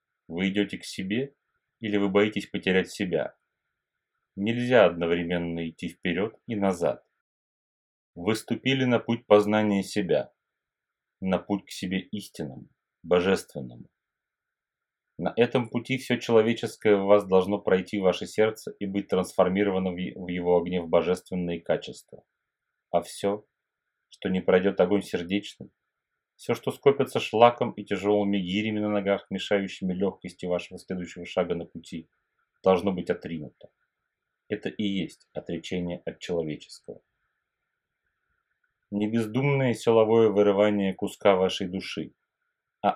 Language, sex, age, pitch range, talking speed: Russian, male, 30-49, 90-110 Hz, 120 wpm